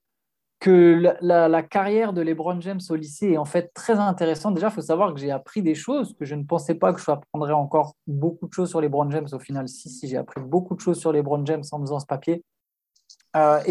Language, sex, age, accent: French, male, 20-39, French